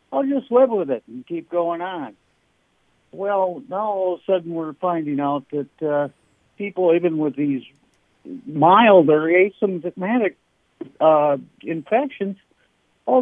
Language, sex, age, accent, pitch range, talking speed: English, male, 60-79, American, 135-185 Hz, 130 wpm